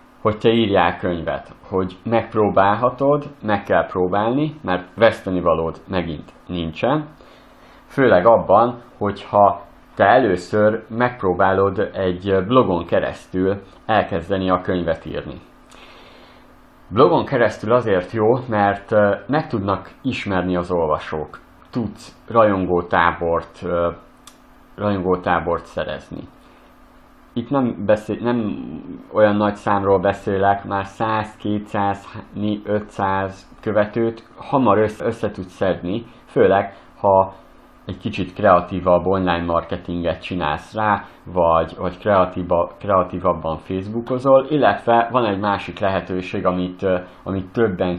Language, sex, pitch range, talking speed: Hungarian, male, 90-110 Hz, 95 wpm